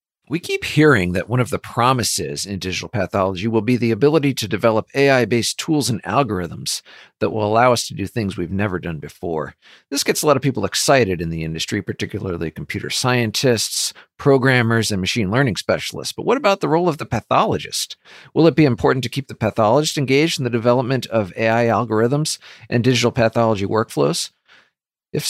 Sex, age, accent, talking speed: male, 50-69, American, 185 wpm